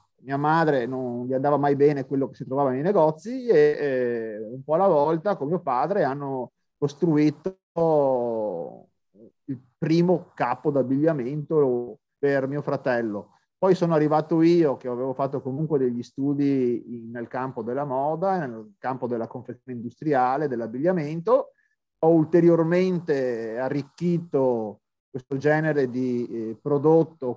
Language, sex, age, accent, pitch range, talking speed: Italian, male, 30-49, native, 125-160 Hz, 130 wpm